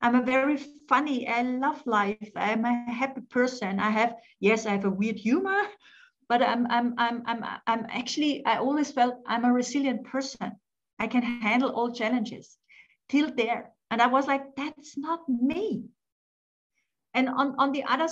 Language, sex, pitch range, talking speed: English, female, 230-270 Hz, 170 wpm